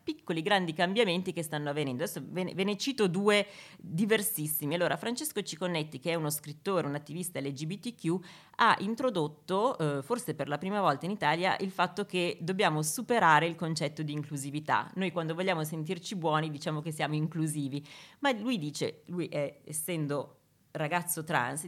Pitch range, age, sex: 155-205 Hz, 30-49, female